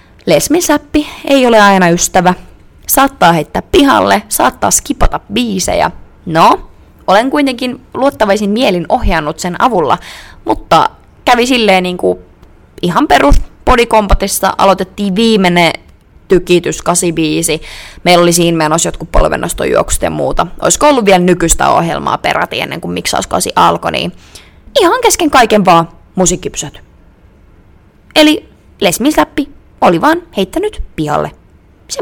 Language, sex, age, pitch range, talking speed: Finnish, female, 20-39, 175-280 Hz, 115 wpm